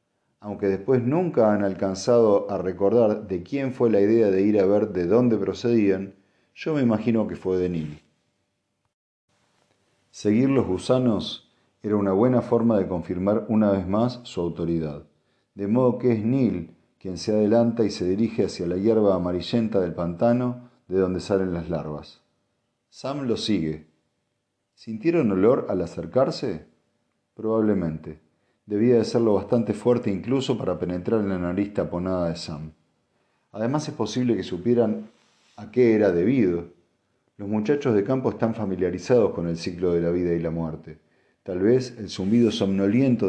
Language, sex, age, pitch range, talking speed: Spanish, male, 40-59, 90-115 Hz, 155 wpm